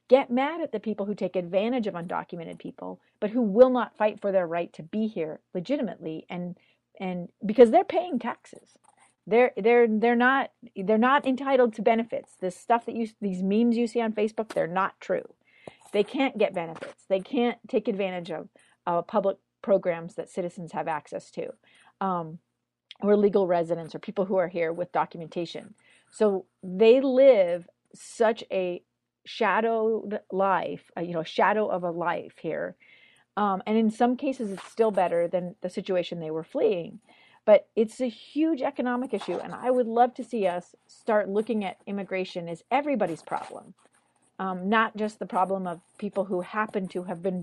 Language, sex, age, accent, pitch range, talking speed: English, female, 40-59, American, 180-235 Hz, 175 wpm